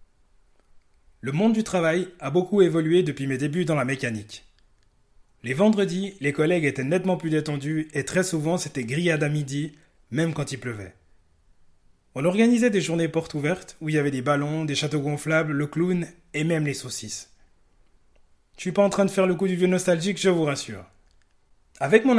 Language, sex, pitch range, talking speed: French, male, 135-180 Hz, 190 wpm